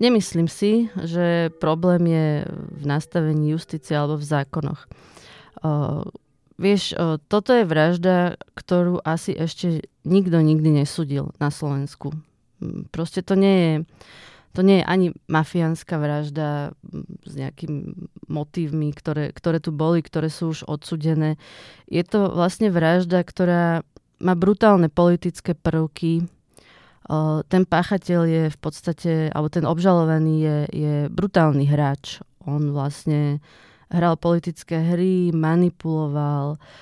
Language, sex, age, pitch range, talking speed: Czech, female, 20-39, 150-180 Hz, 120 wpm